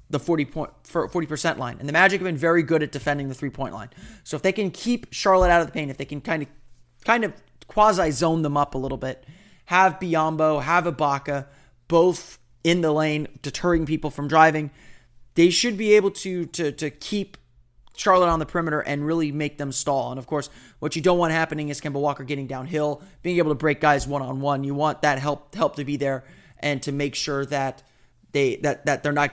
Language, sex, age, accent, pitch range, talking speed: English, male, 30-49, American, 135-165 Hz, 225 wpm